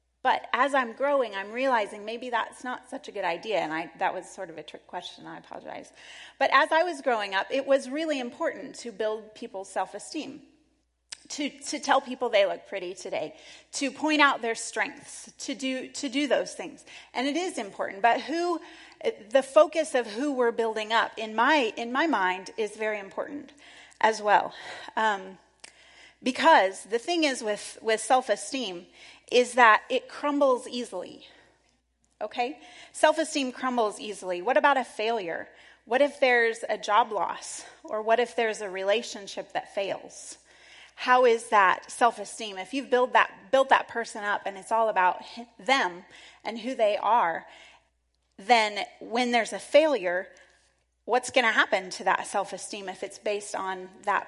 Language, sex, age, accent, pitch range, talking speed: English, female, 30-49, American, 210-280 Hz, 170 wpm